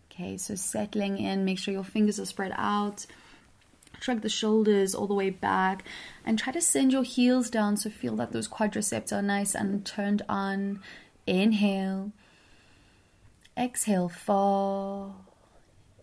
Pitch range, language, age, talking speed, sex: 180-205 Hz, English, 20-39, 140 wpm, female